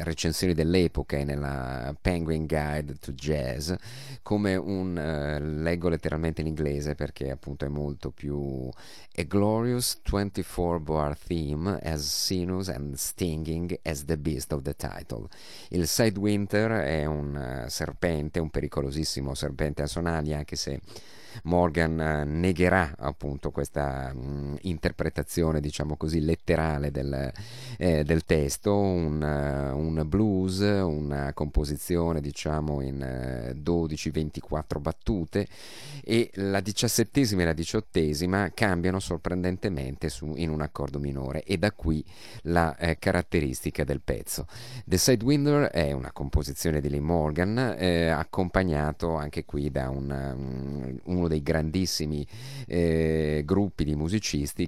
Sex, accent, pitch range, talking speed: male, native, 70-90 Hz, 120 wpm